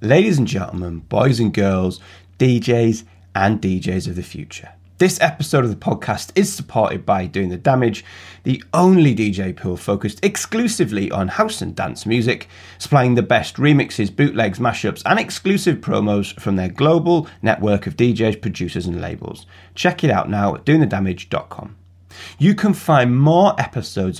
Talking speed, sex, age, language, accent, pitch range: 155 wpm, male, 30-49, English, British, 95-150 Hz